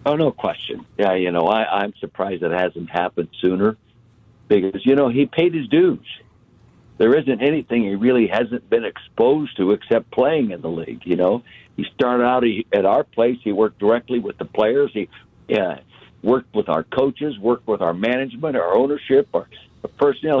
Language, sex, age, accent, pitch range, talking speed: English, male, 60-79, American, 115-145 Hz, 175 wpm